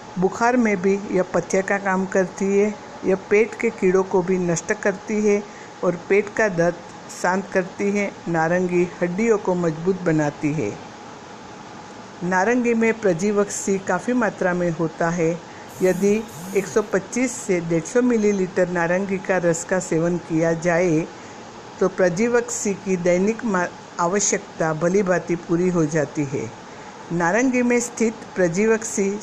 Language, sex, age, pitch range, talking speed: Hindi, female, 60-79, 170-210 Hz, 135 wpm